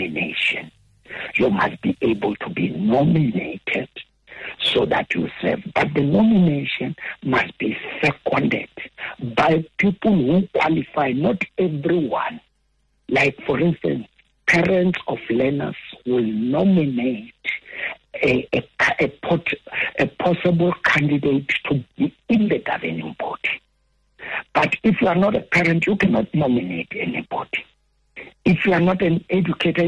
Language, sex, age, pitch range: English, male, 60-79, 145-195 Hz